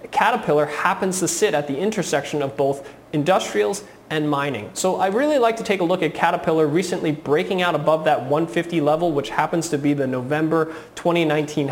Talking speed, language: 185 wpm, English